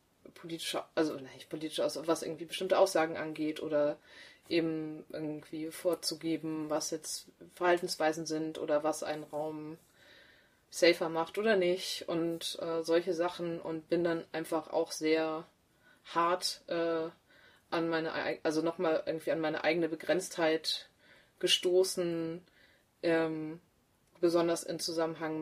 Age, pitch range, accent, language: 20-39, 155-170 Hz, German, German